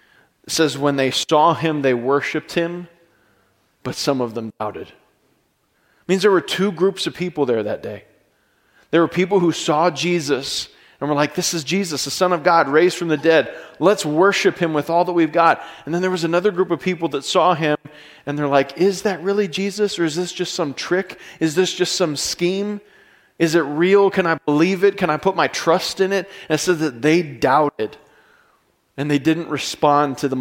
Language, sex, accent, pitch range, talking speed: English, male, American, 140-180 Hz, 215 wpm